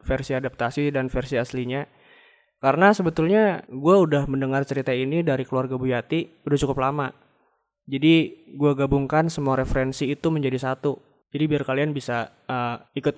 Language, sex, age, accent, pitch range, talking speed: Indonesian, male, 20-39, native, 130-150 Hz, 145 wpm